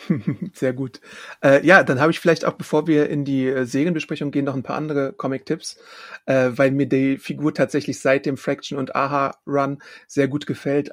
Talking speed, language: 185 wpm, German